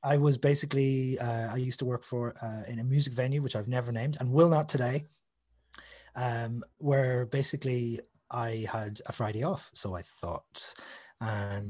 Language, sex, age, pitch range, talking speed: English, male, 20-39, 105-130 Hz, 175 wpm